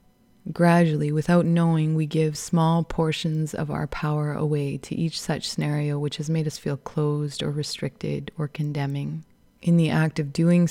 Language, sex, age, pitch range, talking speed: English, female, 20-39, 150-170 Hz, 170 wpm